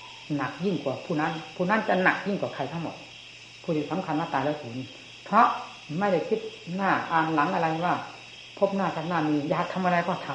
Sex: female